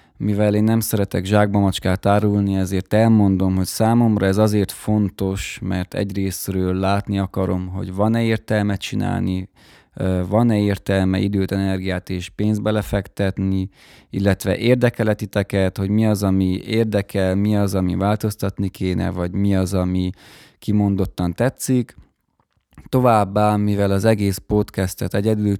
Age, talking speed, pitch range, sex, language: 20-39, 120 wpm, 95-110 Hz, male, Hungarian